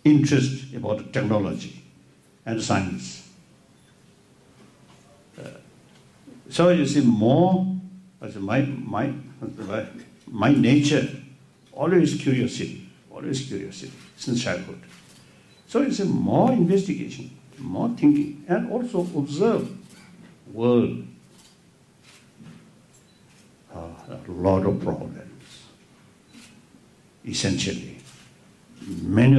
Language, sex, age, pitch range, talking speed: Urdu, male, 60-79, 100-150 Hz, 80 wpm